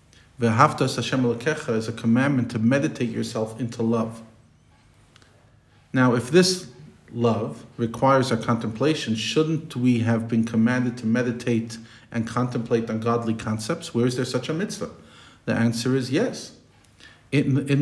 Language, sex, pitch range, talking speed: English, male, 115-130 Hz, 145 wpm